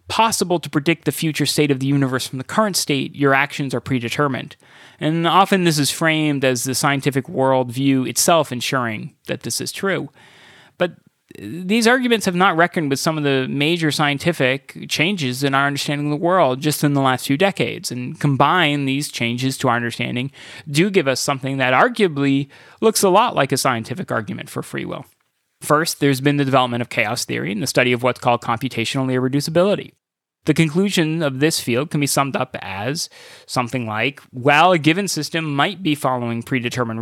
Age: 30-49